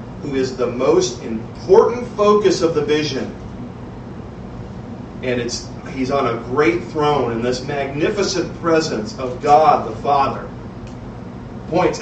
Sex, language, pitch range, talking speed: male, English, 120-145 Hz, 125 wpm